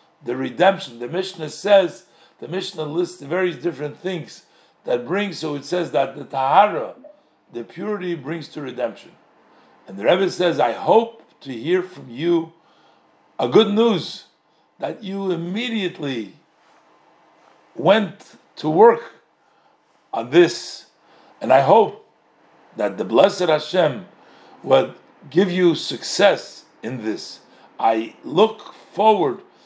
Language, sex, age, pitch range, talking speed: English, male, 50-69, 135-180 Hz, 125 wpm